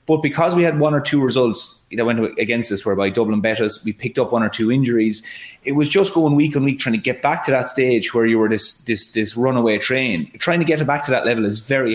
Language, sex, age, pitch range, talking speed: English, male, 20-39, 110-135 Hz, 275 wpm